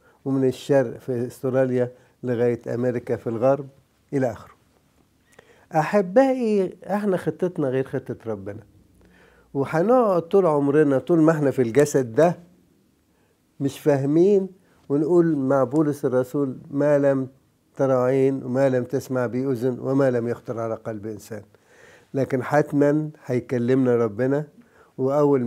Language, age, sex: English, 50-69, male